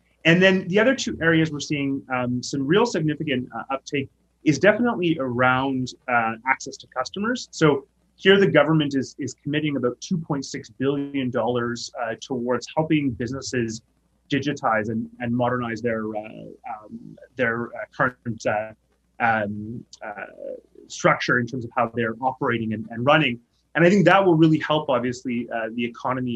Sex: male